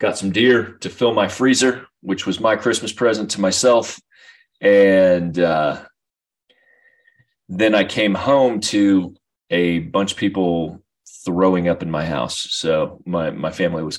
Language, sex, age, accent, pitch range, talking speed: English, male, 30-49, American, 85-110 Hz, 150 wpm